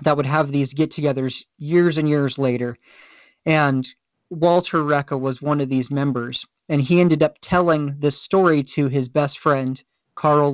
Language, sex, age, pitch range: English, male, 30-49, 140-165 Hz